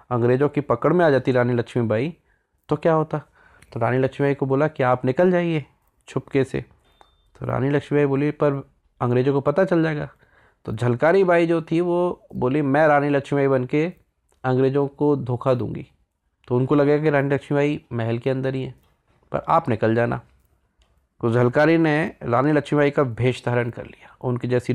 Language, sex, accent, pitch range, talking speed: Hindi, male, native, 125-155 Hz, 175 wpm